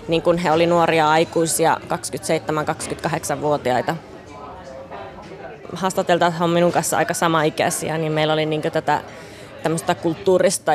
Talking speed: 105 wpm